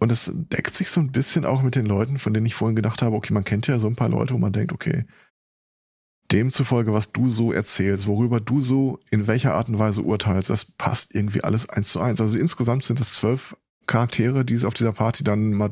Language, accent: German, German